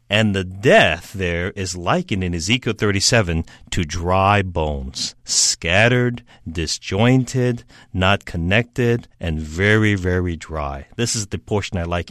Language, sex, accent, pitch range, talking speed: English, male, American, 85-115 Hz, 130 wpm